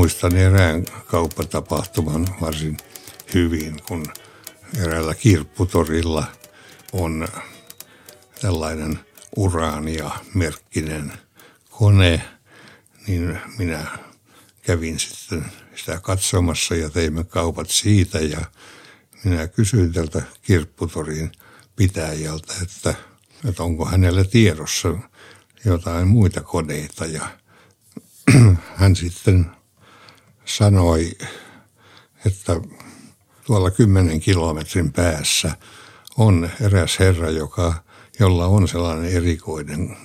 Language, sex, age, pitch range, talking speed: Finnish, male, 60-79, 80-100 Hz, 80 wpm